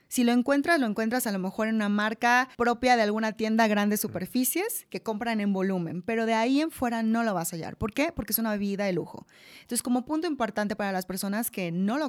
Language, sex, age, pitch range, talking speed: Spanish, female, 20-39, 200-250 Hz, 250 wpm